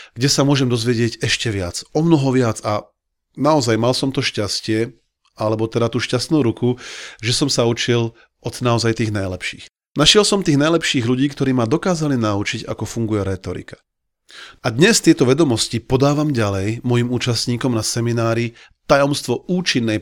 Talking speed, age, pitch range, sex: 155 wpm, 40-59, 110-145 Hz, male